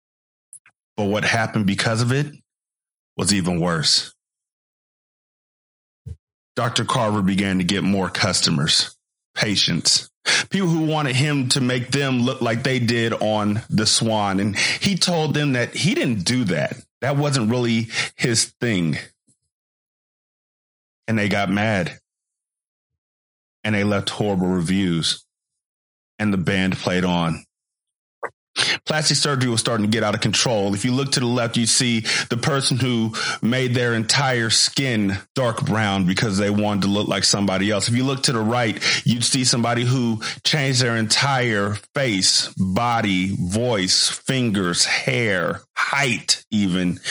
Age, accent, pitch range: 30-49, American, 100-125 Hz